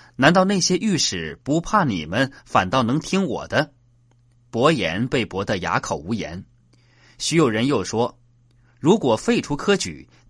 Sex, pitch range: male, 120-150 Hz